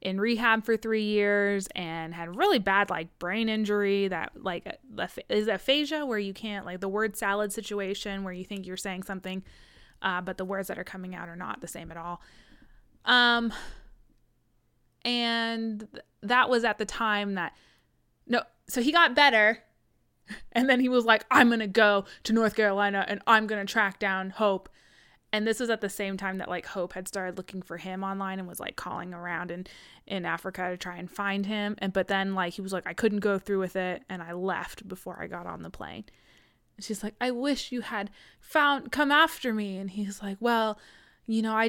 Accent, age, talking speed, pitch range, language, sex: American, 20-39, 205 wpm, 195-235 Hz, English, female